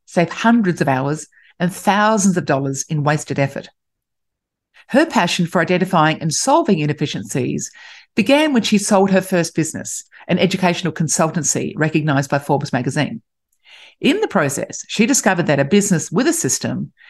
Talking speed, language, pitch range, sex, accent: 150 wpm, English, 150-200 Hz, female, Australian